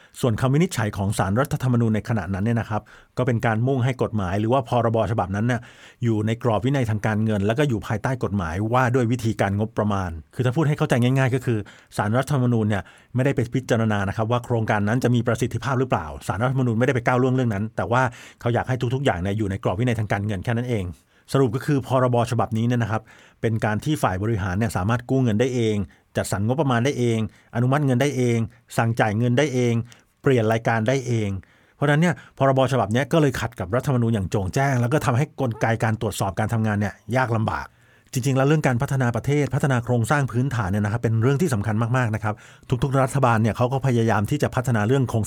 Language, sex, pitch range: Thai, male, 110-130 Hz